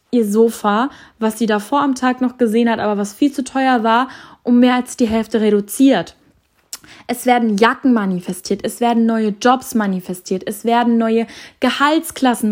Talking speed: 170 wpm